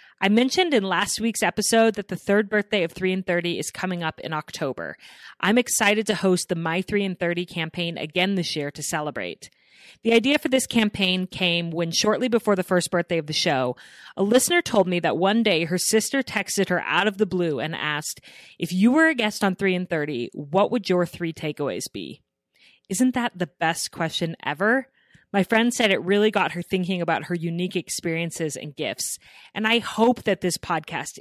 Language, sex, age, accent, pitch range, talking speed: English, female, 30-49, American, 170-215 Hz, 205 wpm